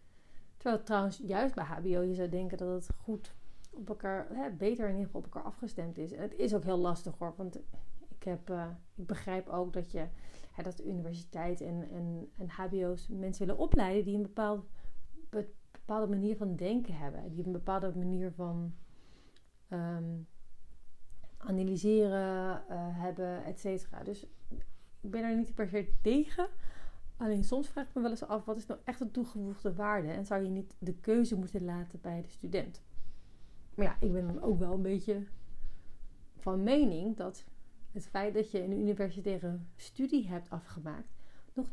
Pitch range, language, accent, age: 175-215 Hz, Dutch, Dutch, 40-59